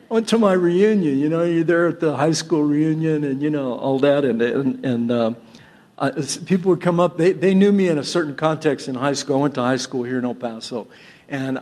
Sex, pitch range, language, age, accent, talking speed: male, 130-200 Hz, English, 50-69, American, 255 wpm